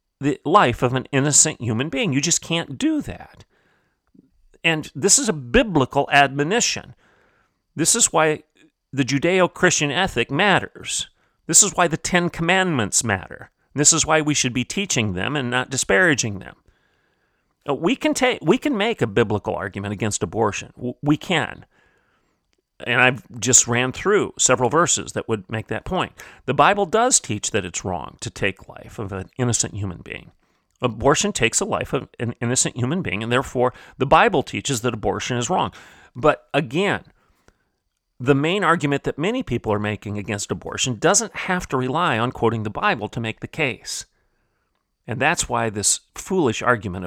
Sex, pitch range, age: male, 110-165 Hz, 40-59